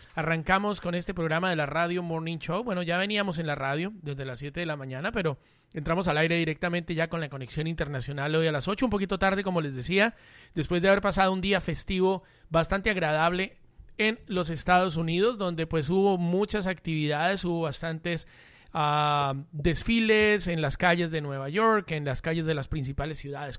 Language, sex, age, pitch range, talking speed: Spanish, male, 30-49, 155-190 Hz, 195 wpm